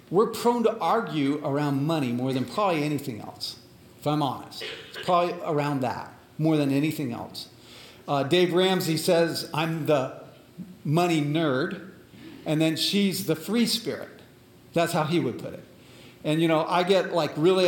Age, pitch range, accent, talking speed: 50-69, 150-195 Hz, American, 165 wpm